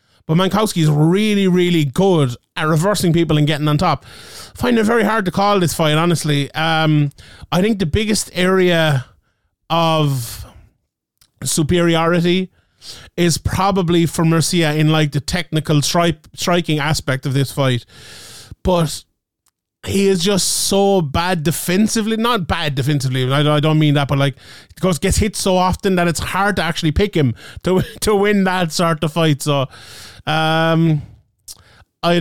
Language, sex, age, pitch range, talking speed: English, male, 30-49, 140-180 Hz, 155 wpm